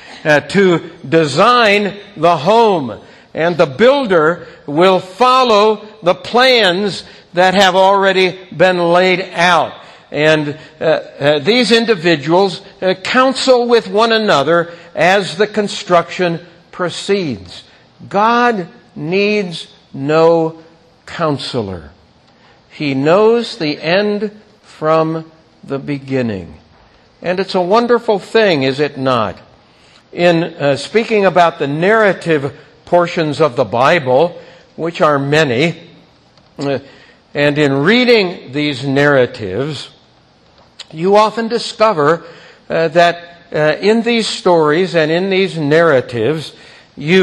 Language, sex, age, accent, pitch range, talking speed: English, male, 60-79, American, 155-205 Hz, 105 wpm